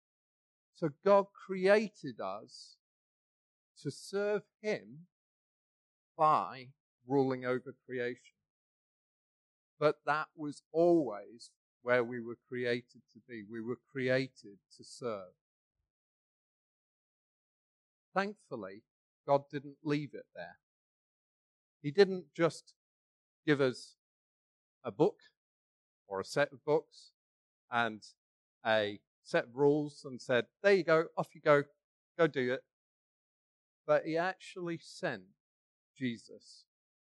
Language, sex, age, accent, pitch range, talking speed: English, male, 40-59, British, 125-160 Hz, 105 wpm